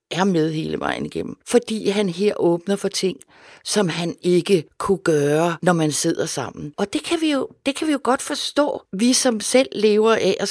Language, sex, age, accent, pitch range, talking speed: Danish, female, 60-79, native, 165-225 Hz, 210 wpm